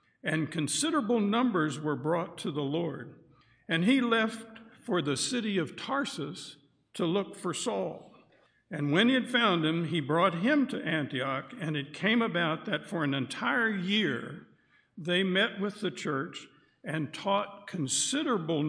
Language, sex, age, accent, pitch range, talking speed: English, male, 60-79, American, 145-205 Hz, 155 wpm